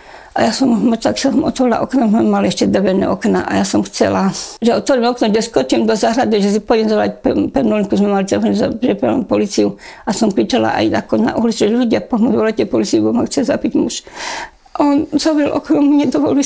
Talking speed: 200 wpm